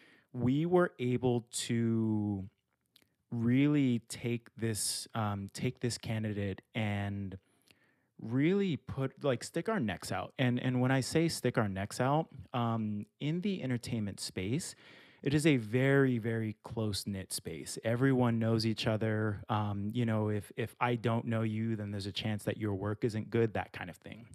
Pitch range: 105-125 Hz